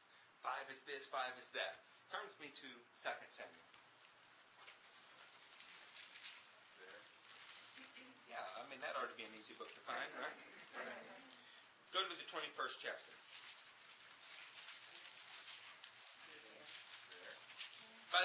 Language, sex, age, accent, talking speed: English, male, 50-69, American, 100 wpm